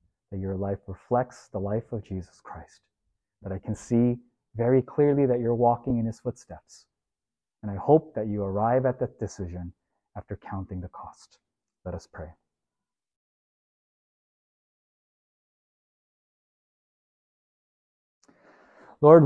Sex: male